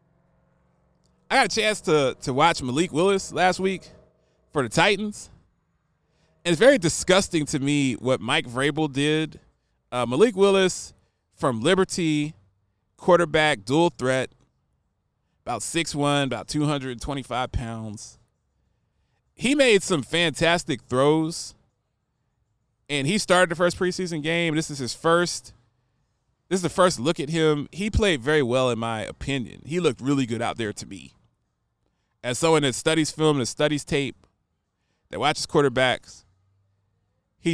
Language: English